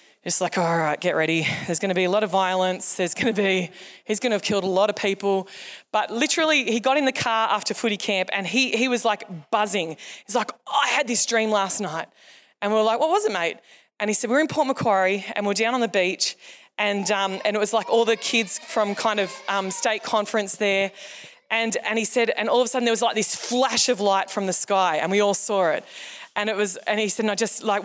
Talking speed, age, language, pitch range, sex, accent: 265 wpm, 20-39, English, 200-260 Hz, female, Australian